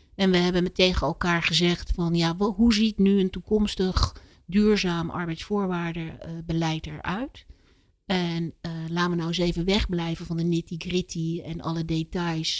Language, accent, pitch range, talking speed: Dutch, Dutch, 165-195 Hz, 155 wpm